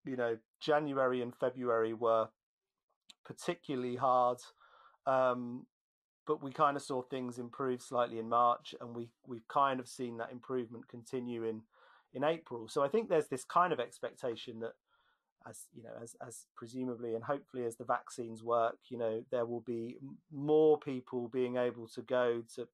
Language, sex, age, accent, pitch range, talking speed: English, male, 30-49, British, 120-150 Hz, 170 wpm